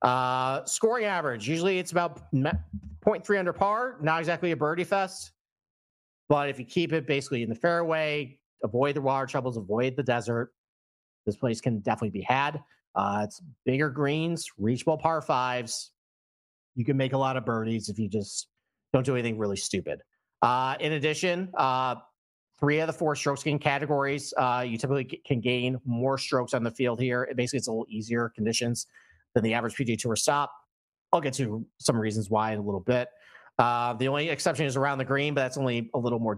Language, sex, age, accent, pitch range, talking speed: English, male, 40-59, American, 120-150 Hz, 195 wpm